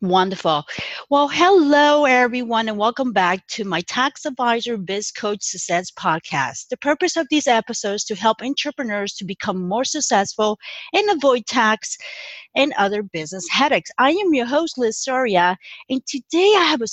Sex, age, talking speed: female, 40-59, 165 wpm